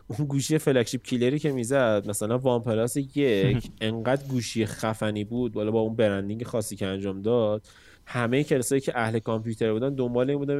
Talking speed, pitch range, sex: 165 wpm, 105-135 Hz, male